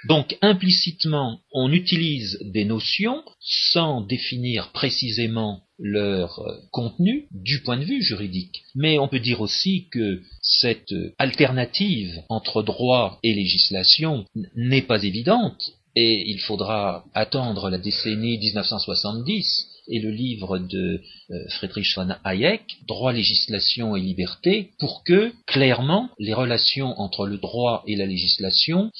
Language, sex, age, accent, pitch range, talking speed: French, male, 40-59, French, 100-140 Hz, 125 wpm